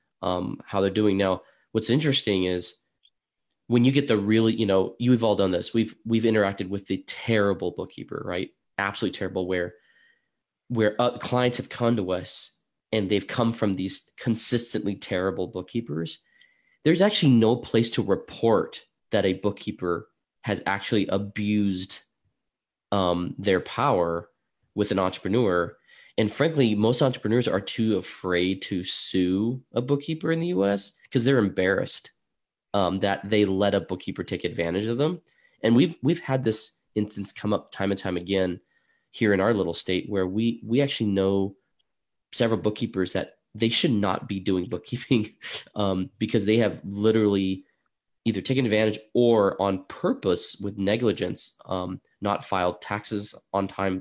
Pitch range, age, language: 95-115 Hz, 20-39, English